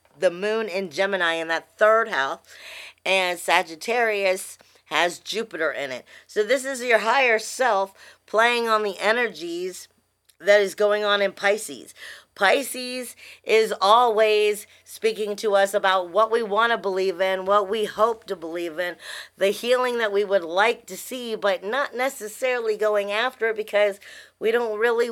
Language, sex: English, female